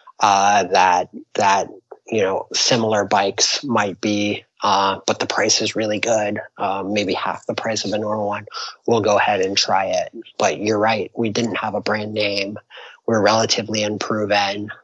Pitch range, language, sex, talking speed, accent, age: 105-115 Hz, English, male, 180 wpm, American, 30-49